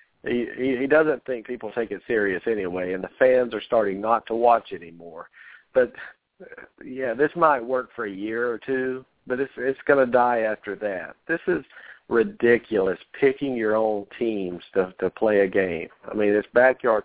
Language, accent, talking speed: English, American, 185 wpm